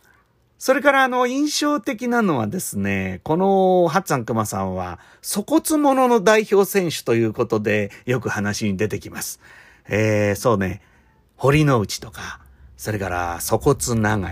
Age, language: 40-59, Japanese